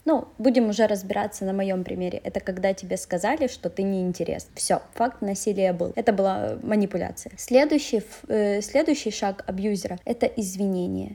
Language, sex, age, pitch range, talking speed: Russian, female, 20-39, 205-260 Hz, 155 wpm